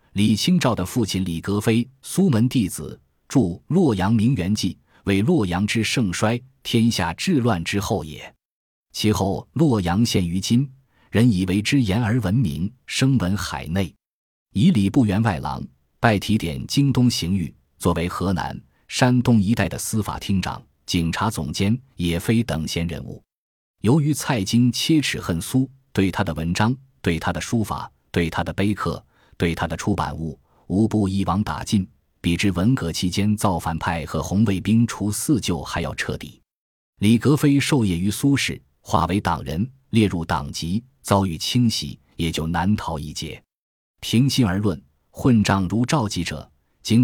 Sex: male